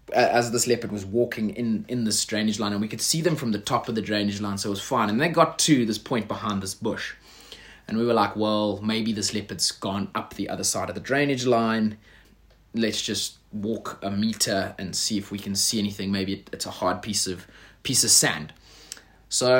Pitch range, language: 105-130 Hz, English